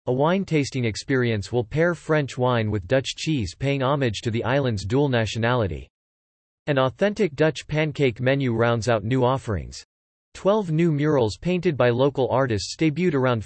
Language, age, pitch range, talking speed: English, 40-59, 115-150 Hz, 155 wpm